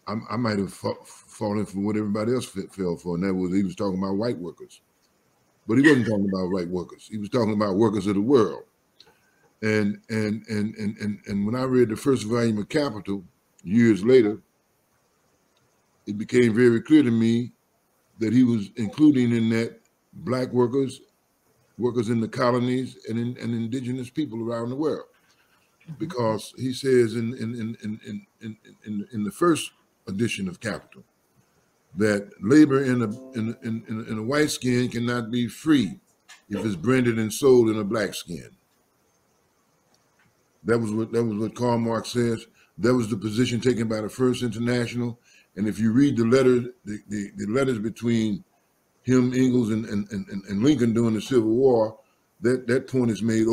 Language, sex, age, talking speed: English, male, 50-69, 175 wpm